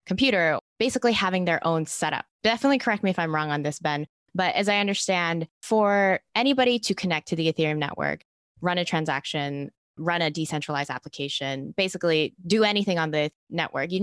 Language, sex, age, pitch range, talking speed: English, female, 20-39, 145-185 Hz, 175 wpm